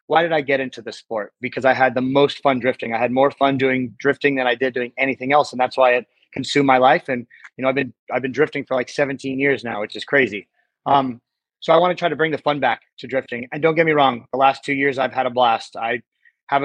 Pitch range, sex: 130-150 Hz, male